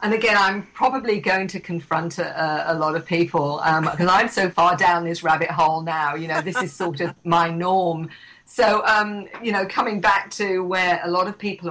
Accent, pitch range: British, 160-195 Hz